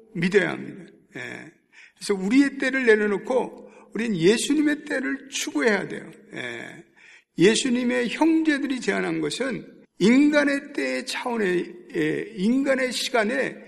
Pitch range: 165-235 Hz